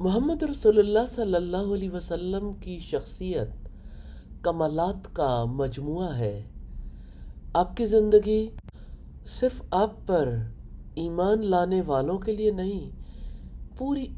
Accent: Indian